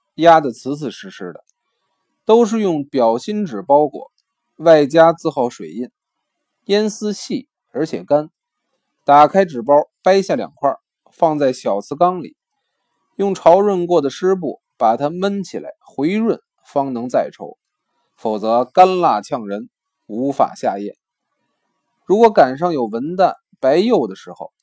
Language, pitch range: Chinese, 145-205 Hz